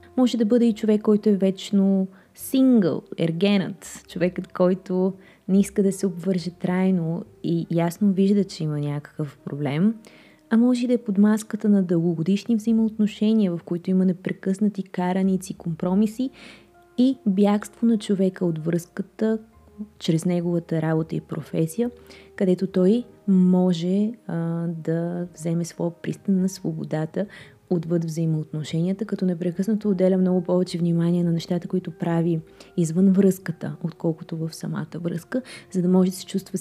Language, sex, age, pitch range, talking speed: Bulgarian, female, 20-39, 170-205 Hz, 140 wpm